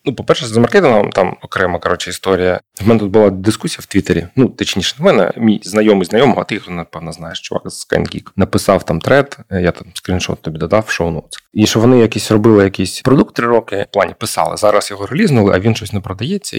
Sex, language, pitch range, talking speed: male, Ukrainian, 95-110 Hz, 210 wpm